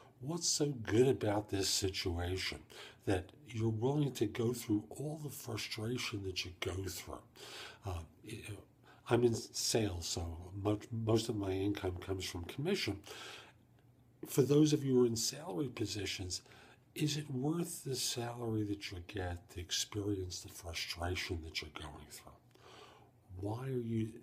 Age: 50-69